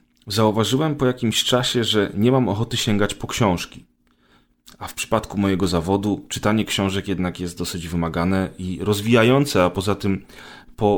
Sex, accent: male, native